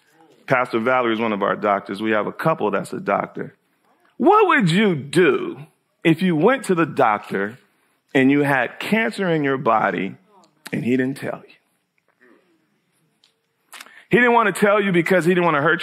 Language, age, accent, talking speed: English, 40-59, American, 180 wpm